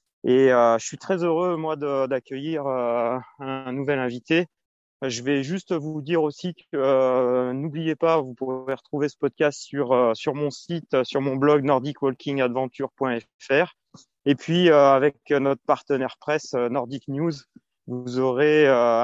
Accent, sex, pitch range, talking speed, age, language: French, male, 130-160 Hz, 155 wpm, 30-49, French